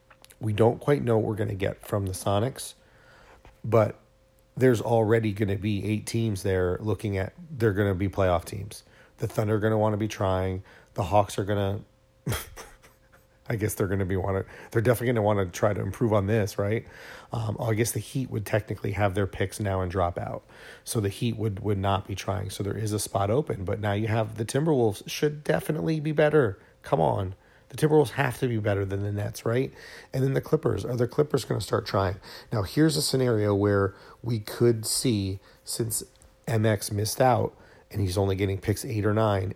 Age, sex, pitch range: 40-59, male, 100-115 Hz